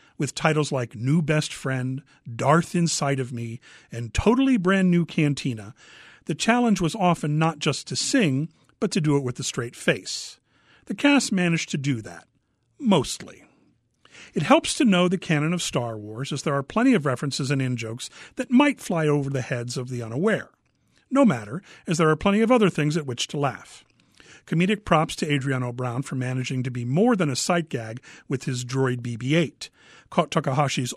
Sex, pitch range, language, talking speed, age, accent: male, 130-180 Hz, English, 185 wpm, 50-69, American